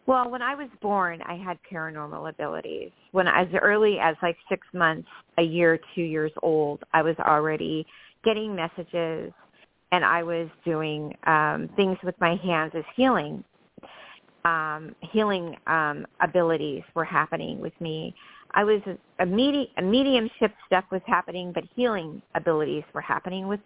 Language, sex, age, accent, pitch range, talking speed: English, female, 40-59, American, 160-195 Hz, 150 wpm